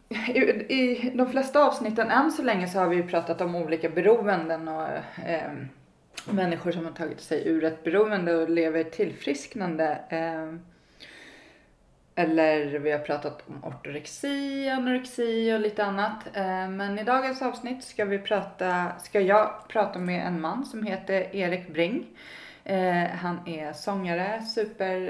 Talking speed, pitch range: 140 wpm, 170-210 Hz